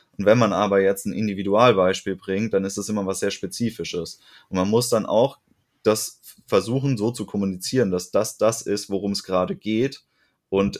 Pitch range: 95-115 Hz